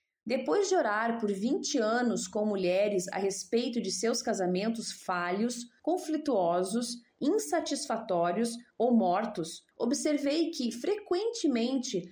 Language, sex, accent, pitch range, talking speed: Portuguese, female, Brazilian, 205-275 Hz, 105 wpm